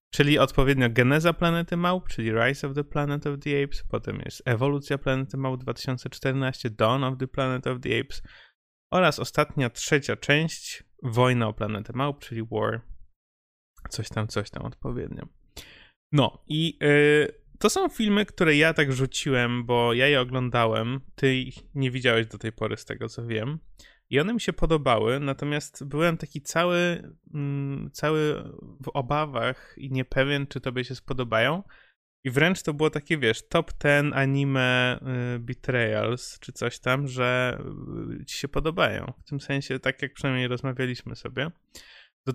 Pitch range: 125-145 Hz